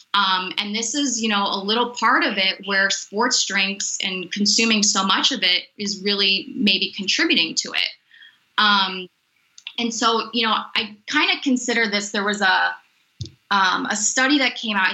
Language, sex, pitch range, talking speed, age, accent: English, female, 195-235 Hz, 180 wpm, 20-39, American